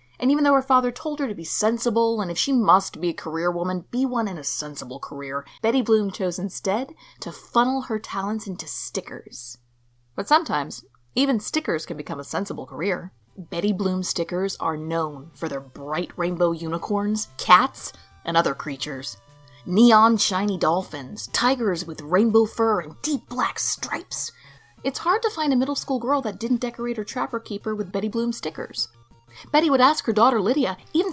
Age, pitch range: 20-39, 155-240 Hz